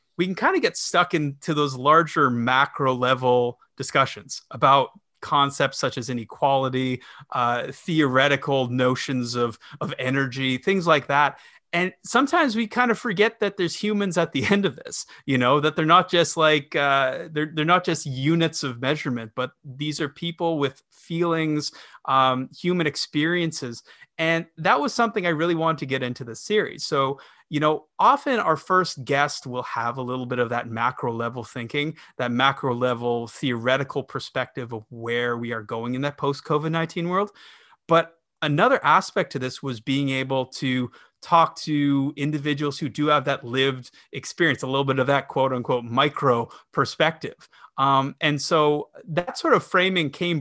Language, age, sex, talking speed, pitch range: English, 30-49, male, 170 wpm, 130-165 Hz